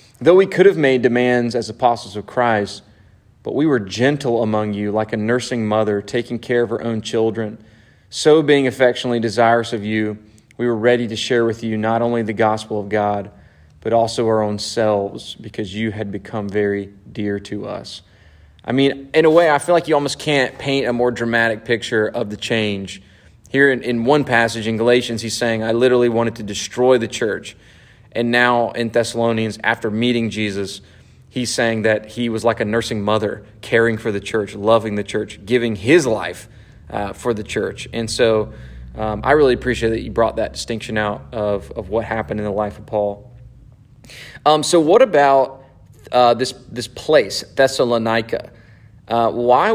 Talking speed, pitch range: 185 wpm, 105-125 Hz